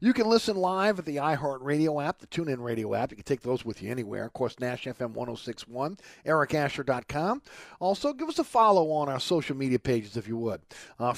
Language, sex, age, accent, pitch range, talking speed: English, male, 50-69, American, 130-175 Hz, 210 wpm